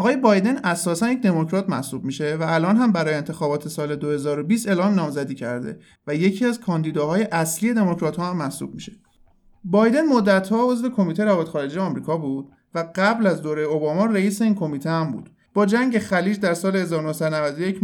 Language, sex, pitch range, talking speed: Persian, male, 155-205 Hz, 165 wpm